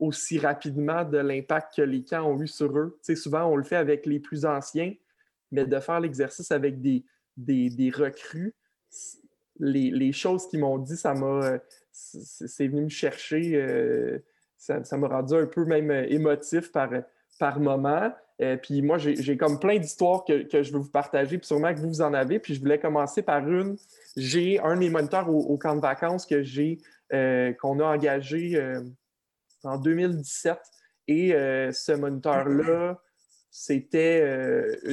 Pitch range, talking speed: 140-165 Hz, 180 wpm